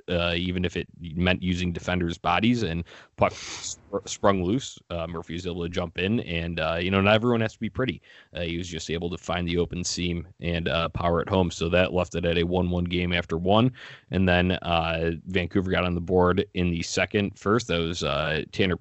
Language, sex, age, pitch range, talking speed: English, male, 20-39, 85-100 Hz, 225 wpm